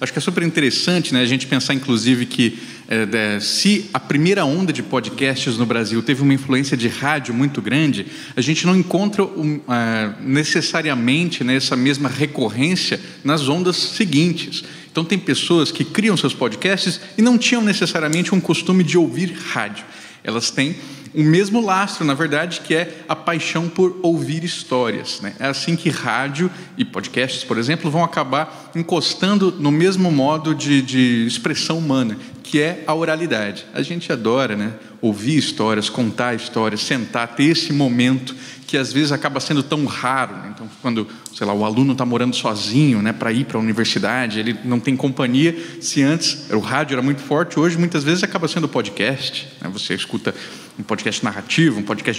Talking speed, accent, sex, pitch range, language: 175 wpm, Brazilian, male, 125-165 Hz, Portuguese